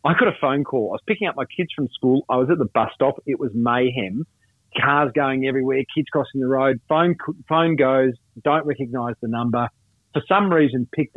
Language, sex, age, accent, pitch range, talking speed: English, male, 40-59, Australian, 125-155 Hz, 215 wpm